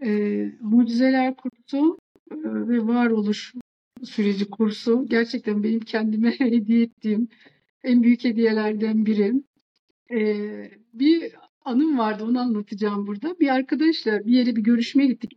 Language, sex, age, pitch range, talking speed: Turkish, female, 50-69, 230-300 Hz, 120 wpm